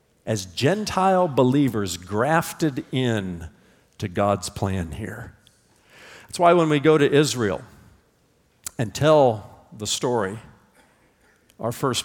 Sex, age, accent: male, 50-69, American